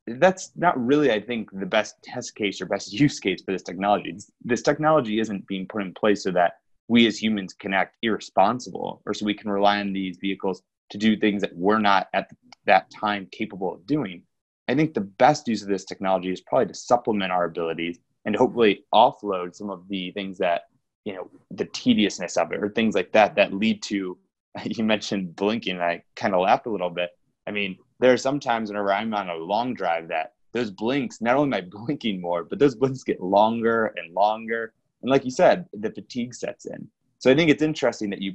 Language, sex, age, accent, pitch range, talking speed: English, male, 20-39, American, 95-120 Hz, 220 wpm